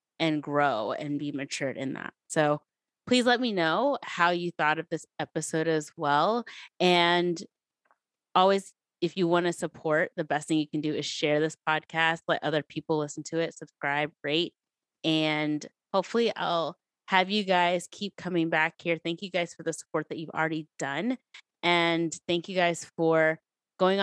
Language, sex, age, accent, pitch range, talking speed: English, female, 20-39, American, 155-175 Hz, 175 wpm